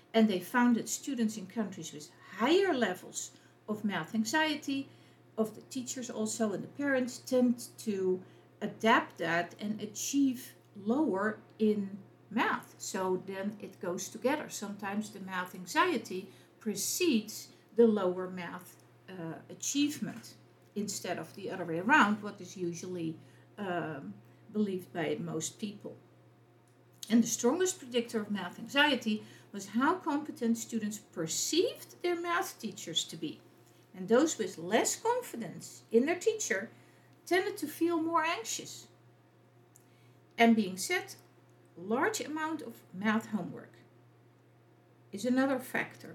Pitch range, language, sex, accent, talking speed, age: 185-260 Hz, English, female, Dutch, 130 wpm, 50-69